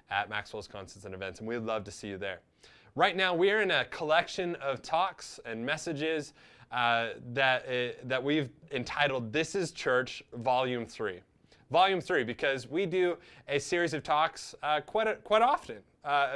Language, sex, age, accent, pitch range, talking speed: English, male, 20-39, American, 130-160 Hz, 175 wpm